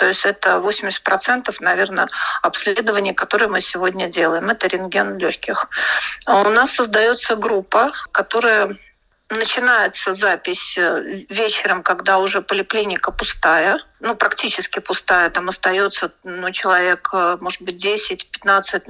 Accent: native